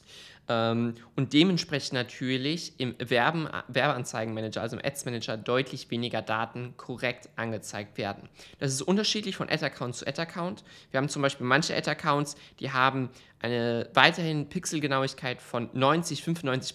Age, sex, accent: 20-39, male, German